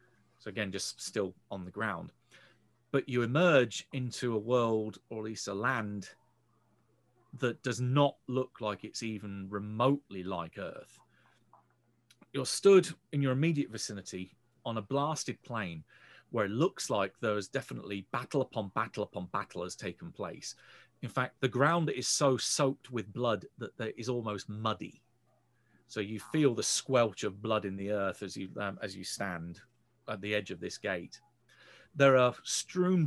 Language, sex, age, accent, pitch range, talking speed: English, male, 40-59, British, 110-135 Hz, 165 wpm